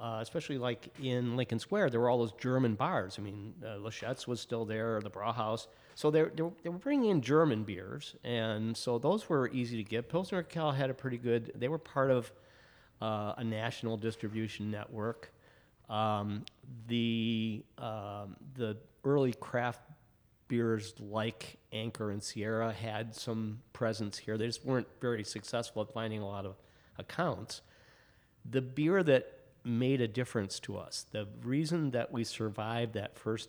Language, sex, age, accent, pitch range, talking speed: English, male, 40-59, American, 105-125 Hz, 170 wpm